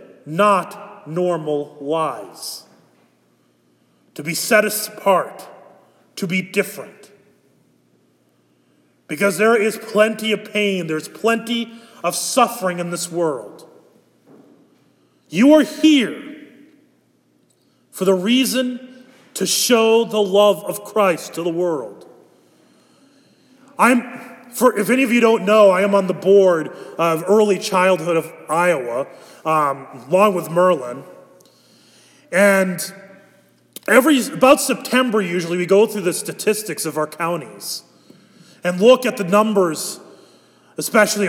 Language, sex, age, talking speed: English, male, 30-49, 115 wpm